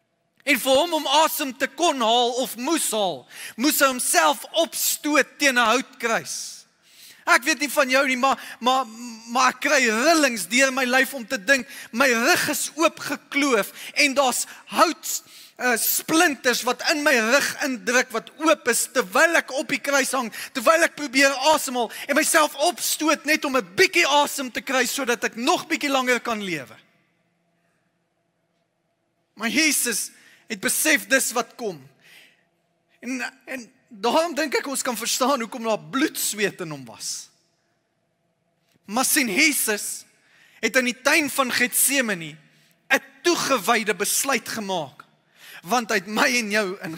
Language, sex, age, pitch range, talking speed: English, male, 20-39, 200-280 Hz, 160 wpm